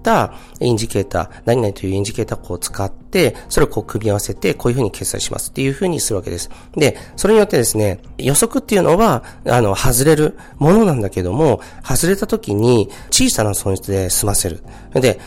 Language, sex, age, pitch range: Japanese, male, 40-59, 100-135 Hz